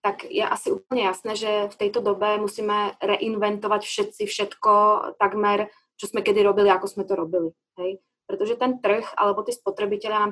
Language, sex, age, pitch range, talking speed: Slovak, female, 20-39, 205-245 Hz, 170 wpm